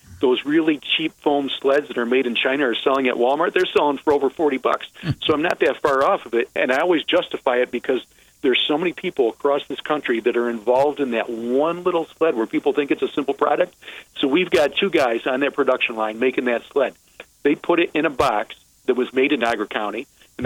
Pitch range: 125-165 Hz